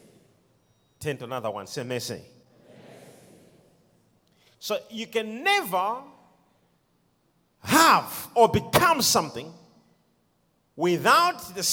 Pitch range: 210-270 Hz